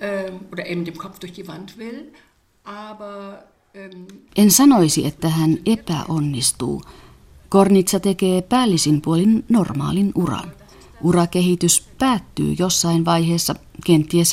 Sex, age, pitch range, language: female, 40-59, 155-195 Hz, Finnish